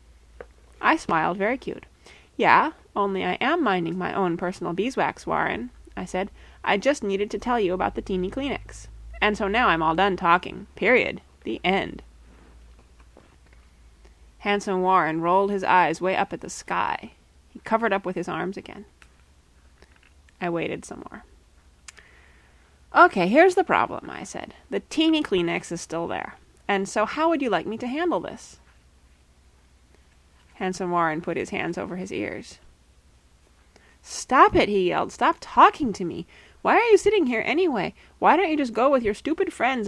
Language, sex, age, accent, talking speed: English, female, 20-39, American, 165 wpm